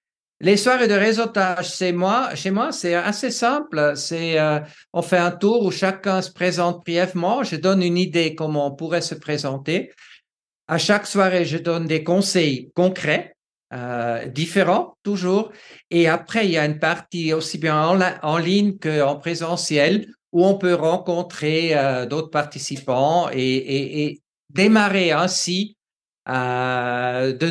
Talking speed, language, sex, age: 150 wpm, French, male, 50-69